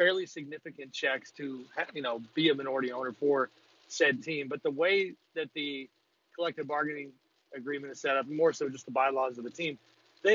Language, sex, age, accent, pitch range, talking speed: English, male, 40-59, American, 130-160 Hz, 190 wpm